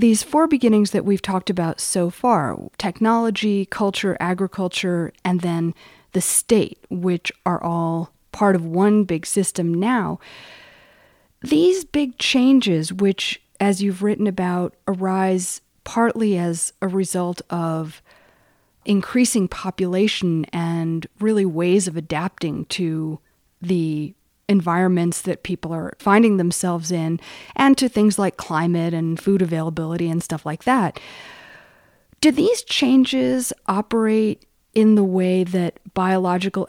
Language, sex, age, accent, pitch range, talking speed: English, female, 30-49, American, 175-220 Hz, 125 wpm